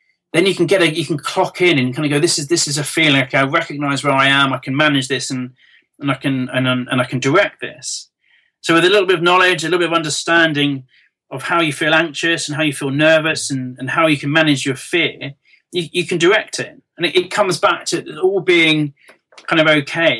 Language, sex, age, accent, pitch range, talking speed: English, male, 30-49, British, 135-165 Hz, 255 wpm